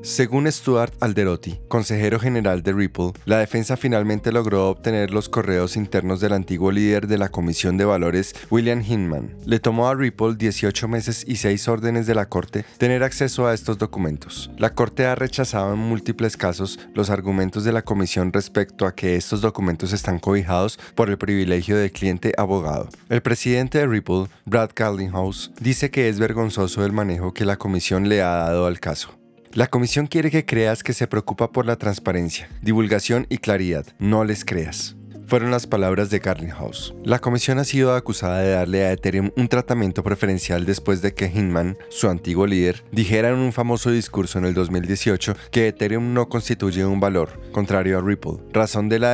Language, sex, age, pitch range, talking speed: Spanish, male, 20-39, 95-115 Hz, 180 wpm